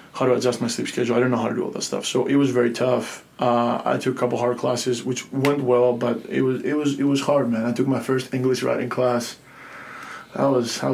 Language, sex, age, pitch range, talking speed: English, male, 20-39, 120-130 Hz, 270 wpm